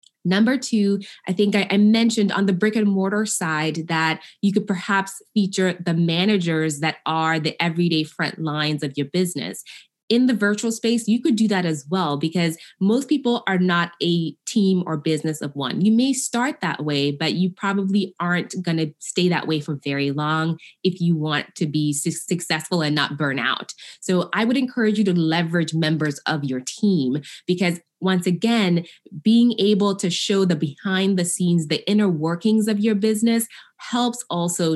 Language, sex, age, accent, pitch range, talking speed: English, female, 20-39, American, 160-205 Hz, 185 wpm